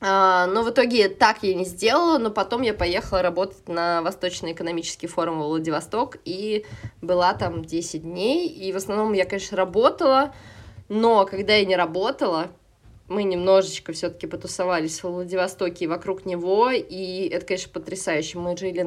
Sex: female